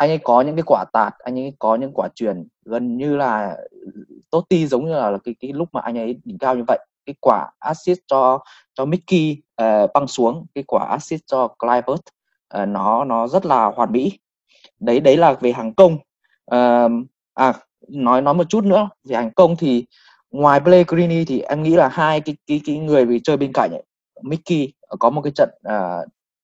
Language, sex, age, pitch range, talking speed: Vietnamese, male, 20-39, 120-165 Hz, 205 wpm